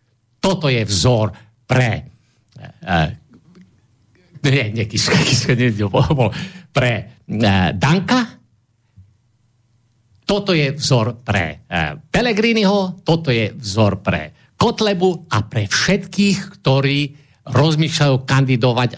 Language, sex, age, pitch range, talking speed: Slovak, male, 50-69, 115-155 Hz, 70 wpm